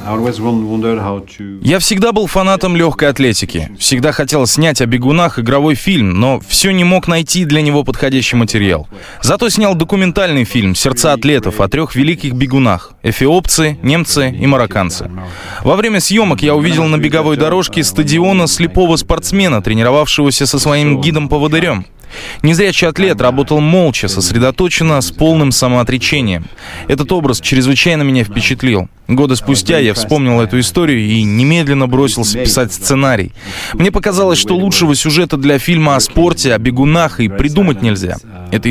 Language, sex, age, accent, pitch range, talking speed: Russian, male, 20-39, native, 110-155 Hz, 145 wpm